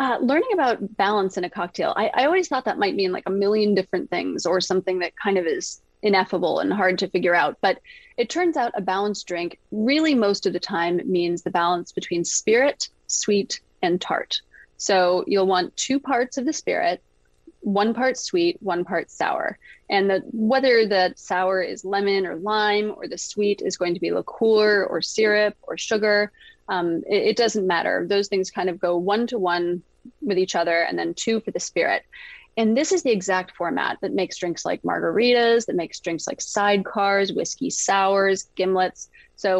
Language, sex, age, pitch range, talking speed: English, female, 30-49, 185-235 Hz, 190 wpm